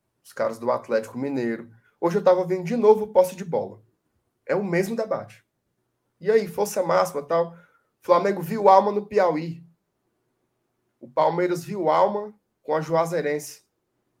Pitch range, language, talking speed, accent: 145-215 Hz, Portuguese, 155 wpm, Brazilian